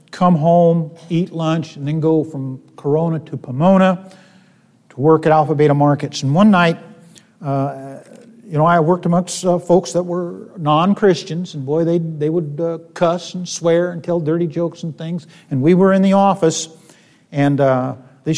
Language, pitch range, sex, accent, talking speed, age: English, 130-170 Hz, male, American, 180 wpm, 50-69